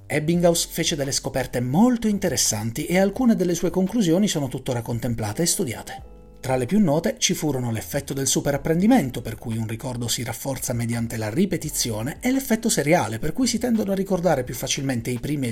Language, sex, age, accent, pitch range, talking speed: Italian, male, 40-59, native, 125-195 Hz, 185 wpm